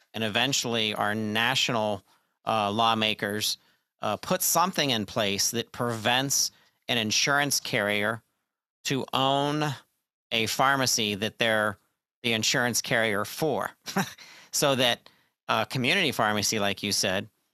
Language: English